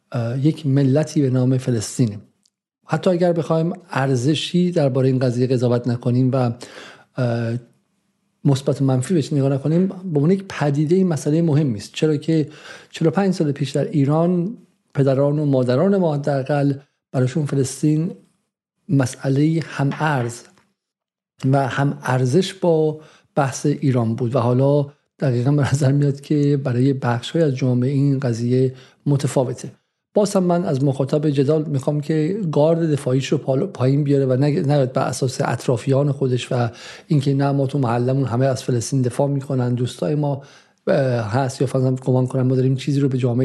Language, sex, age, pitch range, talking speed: Persian, male, 50-69, 130-155 Hz, 150 wpm